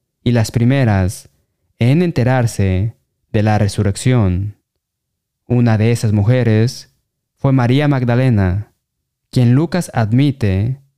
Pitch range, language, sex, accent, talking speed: 105-130 Hz, Spanish, male, Mexican, 100 wpm